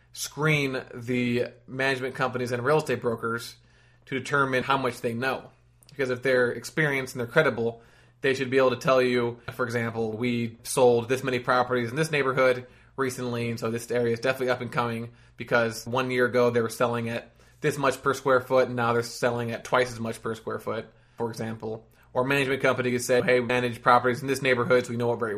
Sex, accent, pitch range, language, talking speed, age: male, American, 120-130 Hz, English, 210 wpm, 20-39